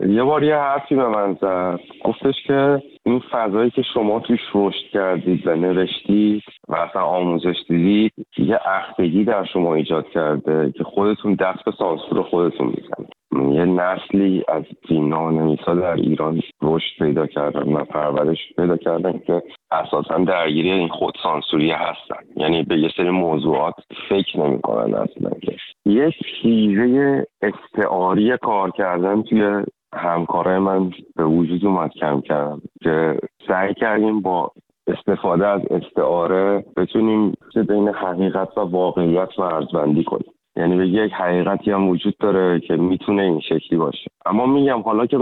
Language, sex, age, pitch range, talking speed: Persian, male, 50-69, 90-105 Hz, 135 wpm